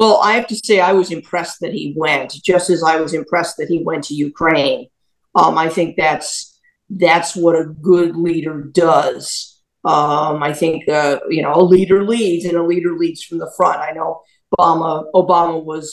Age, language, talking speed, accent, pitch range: 50-69, English, 195 wpm, American, 160-180 Hz